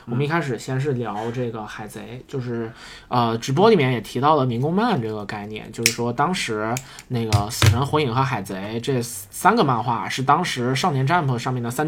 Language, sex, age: Chinese, male, 20-39